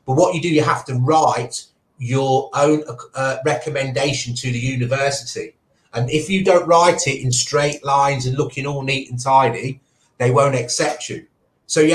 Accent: British